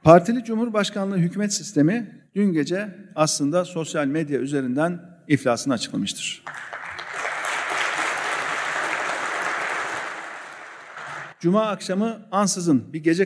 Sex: male